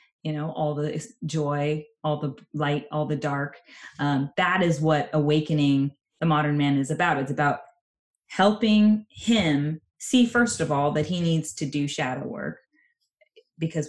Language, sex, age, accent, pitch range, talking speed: English, female, 20-39, American, 145-180 Hz, 160 wpm